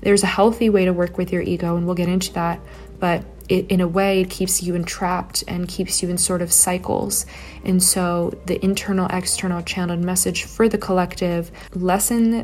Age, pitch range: 20-39, 175-195 Hz